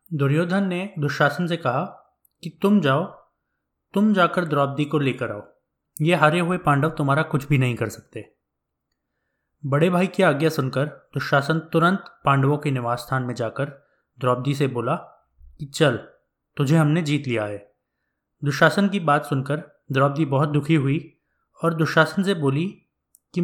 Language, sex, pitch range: English, male, 125-170 Hz